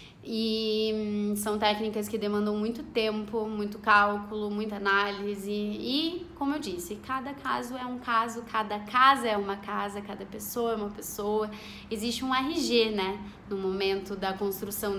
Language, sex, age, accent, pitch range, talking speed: Portuguese, female, 20-39, Brazilian, 210-250 Hz, 150 wpm